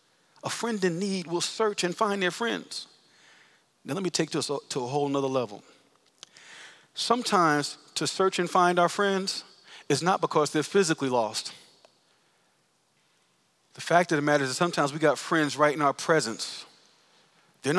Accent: American